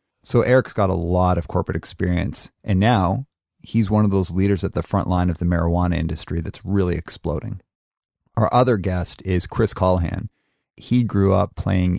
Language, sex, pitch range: English, male, 90-105 Hz